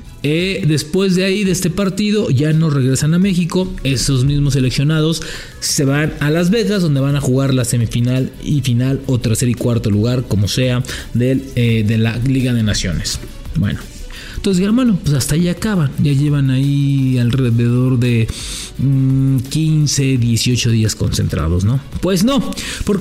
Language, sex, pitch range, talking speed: English, male, 135-195 Hz, 160 wpm